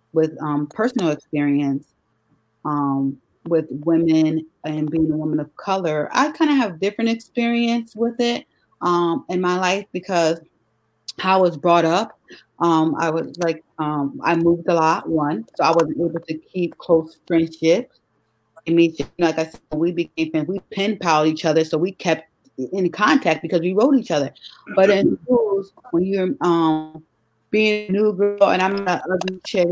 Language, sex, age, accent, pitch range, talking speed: English, female, 30-49, American, 160-185 Hz, 175 wpm